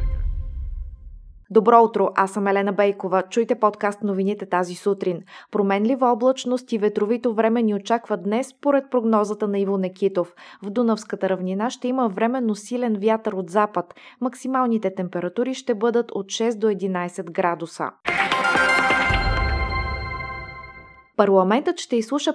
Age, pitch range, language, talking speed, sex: 20-39, 190-230 Hz, Bulgarian, 125 wpm, female